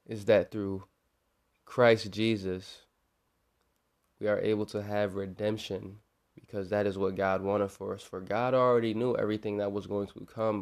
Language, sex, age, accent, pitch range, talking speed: English, male, 20-39, American, 95-110 Hz, 165 wpm